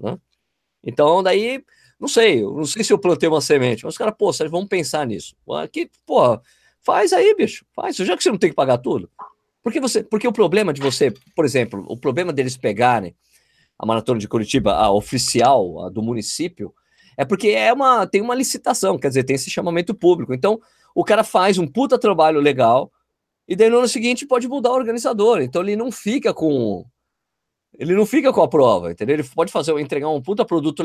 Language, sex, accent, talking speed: Portuguese, male, Brazilian, 200 wpm